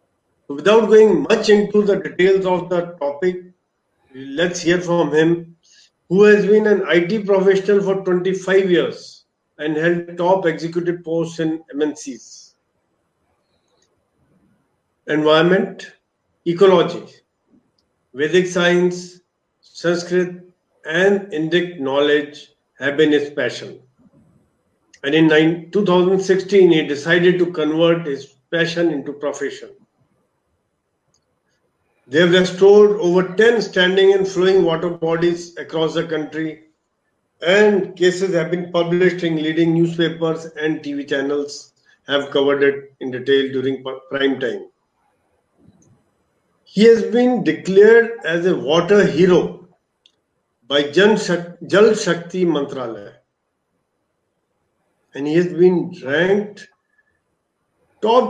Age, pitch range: 50-69, 155-195 Hz